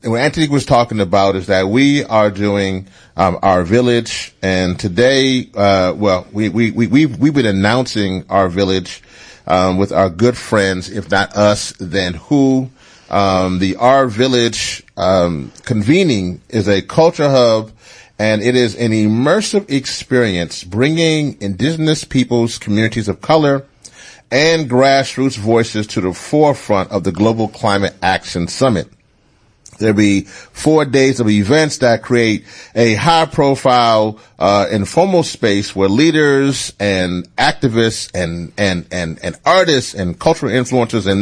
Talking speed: 145 wpm